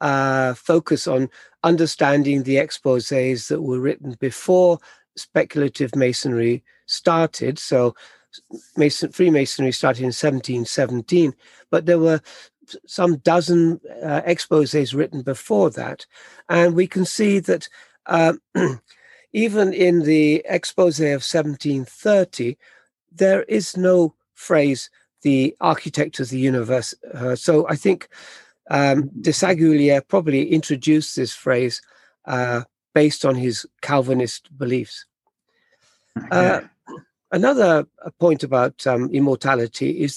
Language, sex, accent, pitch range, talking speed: English, male, British, 135-170 Hz, 110 wpm